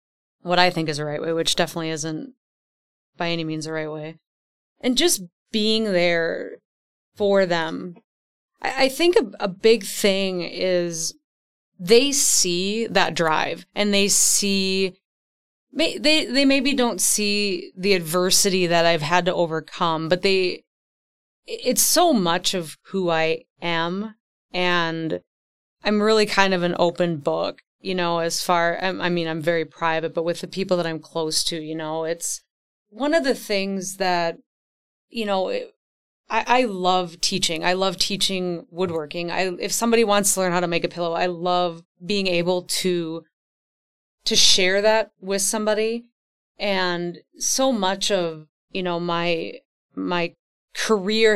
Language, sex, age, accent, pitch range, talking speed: English, female, 30-49, American, 170-205 Hz, 150 wpm